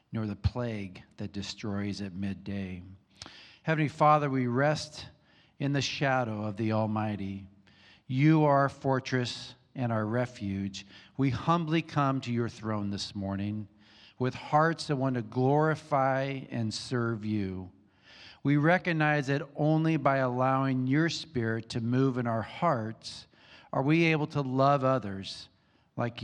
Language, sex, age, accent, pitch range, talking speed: English, male, 50-69, American, 105-140 Hz, 140 wpm